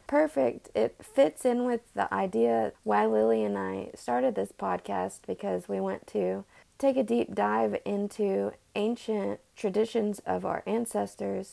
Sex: female